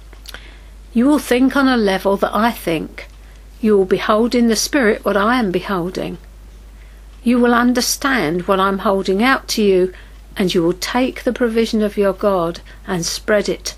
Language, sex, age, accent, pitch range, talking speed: English, female, 50-69, British, 190-240 Hz, 180 wpm